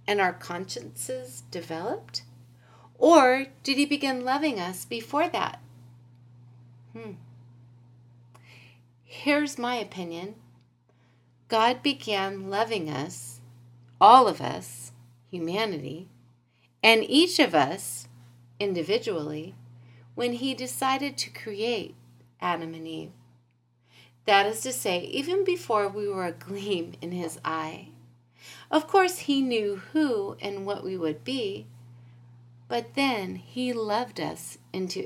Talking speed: 115 wpm